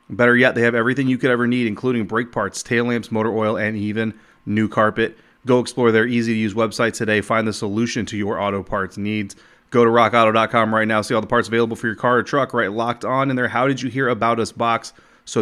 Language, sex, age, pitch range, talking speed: English, male, 30-49, 100-115 Hz, 220 wpm